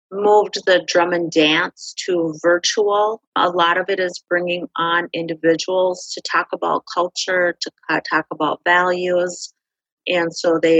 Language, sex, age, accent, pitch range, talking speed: English, female, 40-59, American, 160-180 Hz, 150 wpm